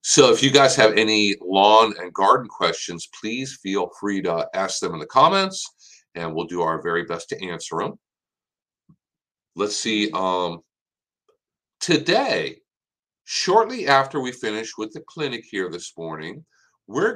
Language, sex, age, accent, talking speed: English, male, 50-69, American, 150 wpm